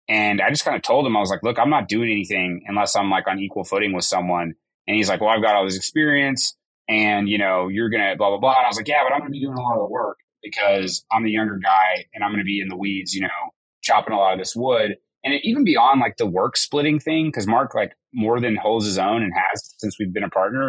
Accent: American